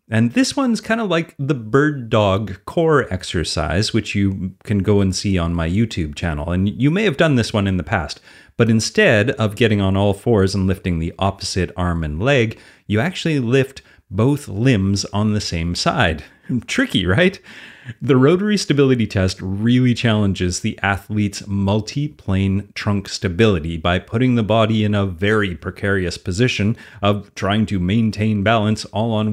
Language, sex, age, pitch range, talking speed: English, male, 30-49, 95-115 Hz, 170 wpm